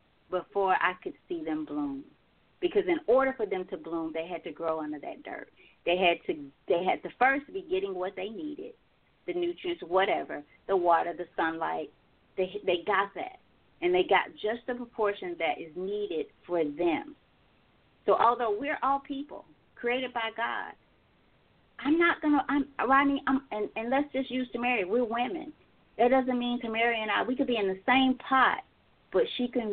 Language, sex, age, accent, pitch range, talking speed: English, female, 30-49, American, 190-275 Hz, 190 wpm